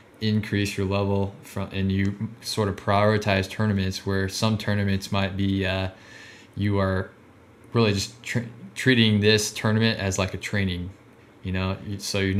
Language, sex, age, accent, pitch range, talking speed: English, male, 20-39, American, 95-110 Hz, 150 wpm